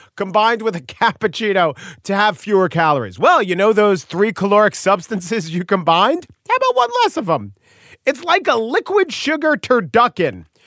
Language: English